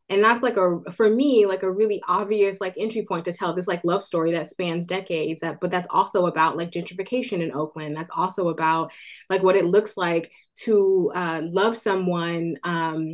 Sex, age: female, 20-39